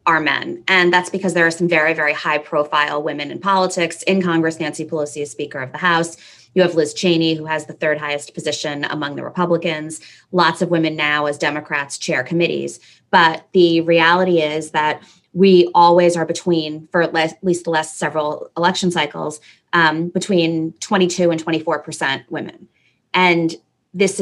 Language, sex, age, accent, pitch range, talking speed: English, female, 20-39, American, 155-180 Hz, 170 wpm